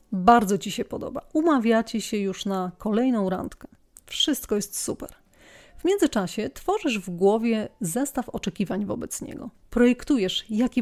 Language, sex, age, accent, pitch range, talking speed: Polish, female, 30-49, native, 200-255 Hz, 135 wpm